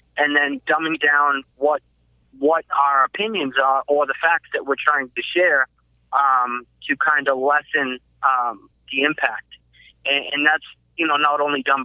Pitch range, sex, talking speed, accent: 120-140 Hz, male, 165 wpm, American